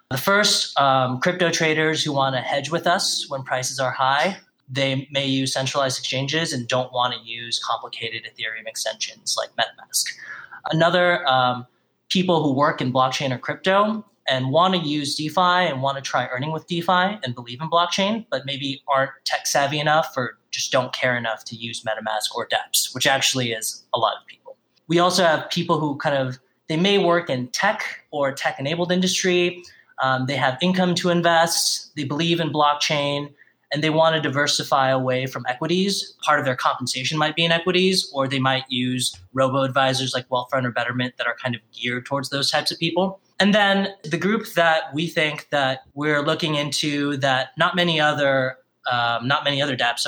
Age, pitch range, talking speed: 20-39, 130-165 Hz, 190 wpm